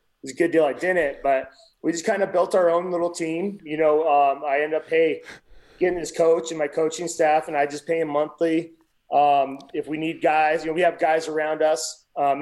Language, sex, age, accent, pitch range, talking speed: English, male, 30-49, American, 140-160 Hz, 240 wpm